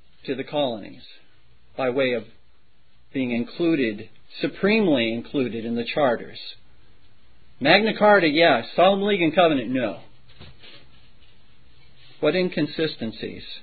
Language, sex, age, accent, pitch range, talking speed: English, male, 50-69, American, 110-145 Hz, 100 wpm